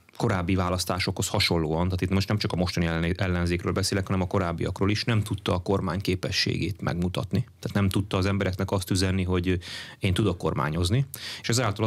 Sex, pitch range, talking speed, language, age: male, 90-110 Hz, 175 wpm, Hungarian, 30-49